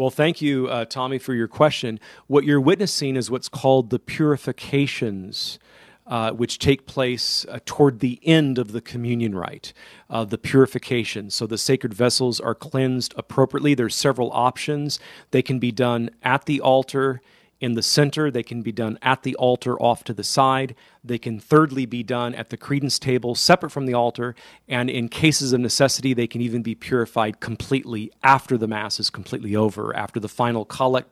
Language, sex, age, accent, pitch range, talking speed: English, male, 40-59, American, 115-135 Hz, 185 wpm